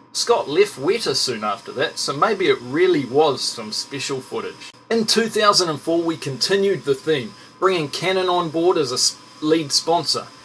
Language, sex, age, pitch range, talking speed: English, male, 30-49, 130-175 Hz, 160 wpm